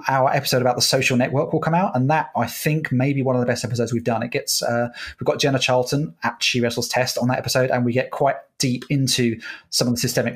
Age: 30-49